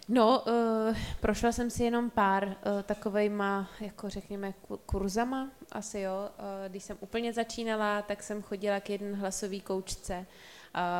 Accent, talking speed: native, 155 wpm